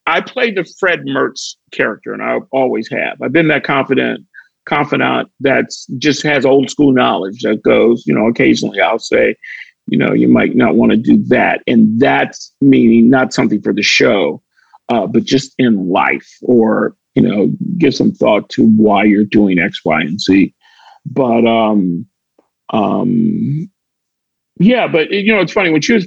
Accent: American